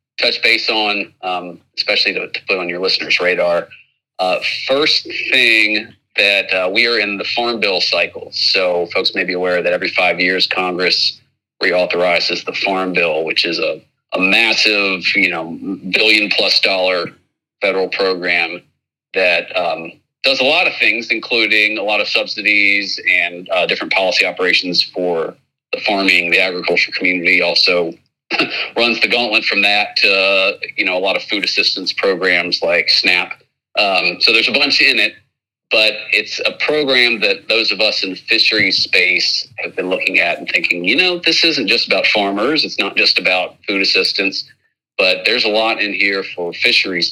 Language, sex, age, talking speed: English, male, 30-49, 175 wpm